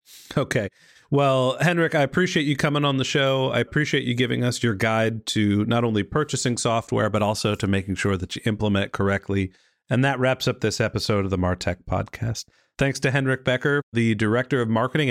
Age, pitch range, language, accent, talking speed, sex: 40-59, 110-140 Hz, English, American, 200 wpm, male